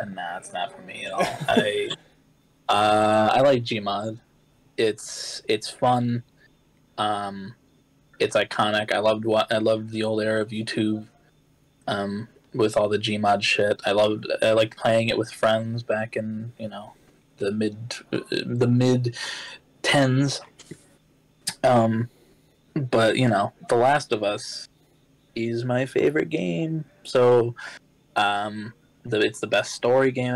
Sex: male